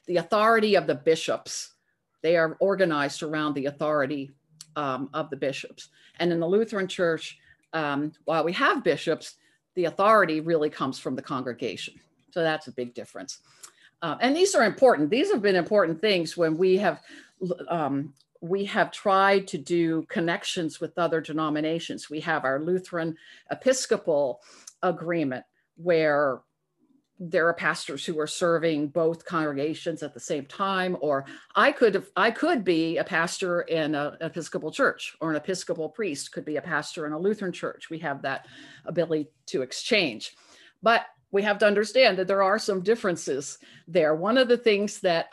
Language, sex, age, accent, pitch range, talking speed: English, female, 50-69, American, 155-195 Hz, 165 wpm